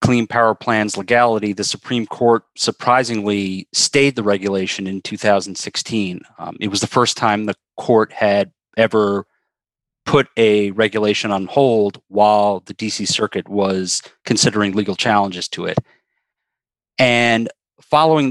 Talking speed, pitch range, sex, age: 130 wpm, 100-120 Hz, male, 40-59